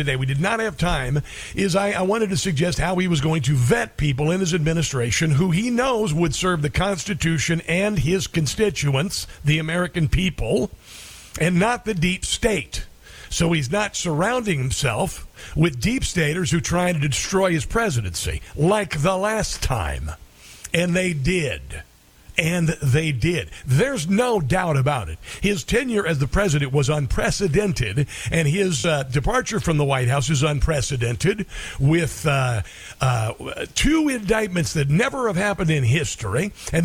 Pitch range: 140-200 Hz